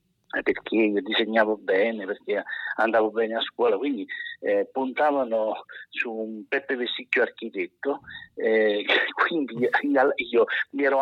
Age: 50-69